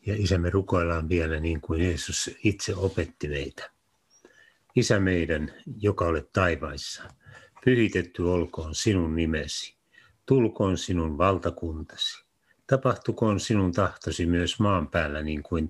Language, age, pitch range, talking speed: Finnish, 60-79, 80-105 Hz, 115 wpm